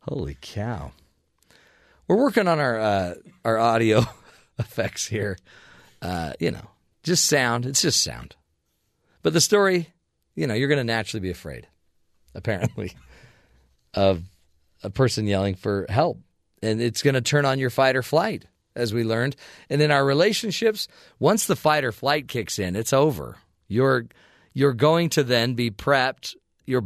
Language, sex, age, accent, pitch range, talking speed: English, male, 40-59, American, 110-145 Hz, 160 wpm